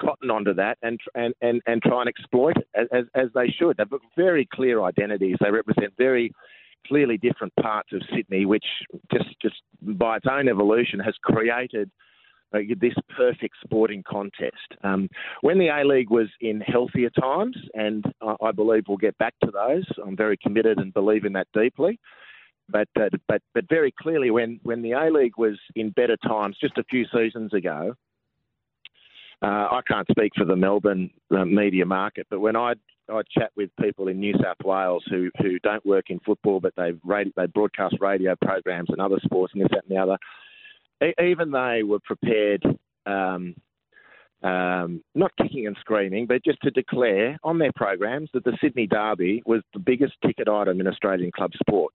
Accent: Australian